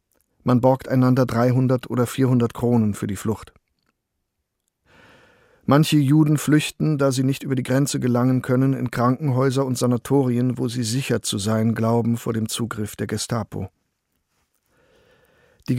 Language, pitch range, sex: German, 115-135 Hz, male